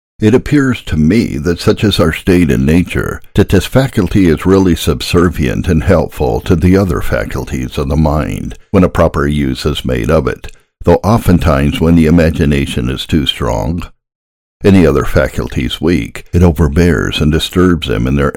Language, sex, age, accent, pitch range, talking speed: English, male, 60-79, American, 75-90 Hz, 175 wpm